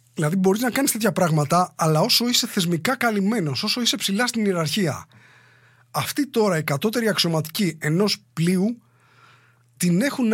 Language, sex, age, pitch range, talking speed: English, male, 30-49, 150-210 Hz, 145 wpm